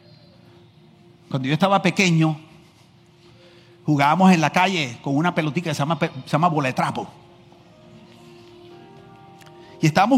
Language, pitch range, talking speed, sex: Spanish, 155-235 Hz, 105 wpm, male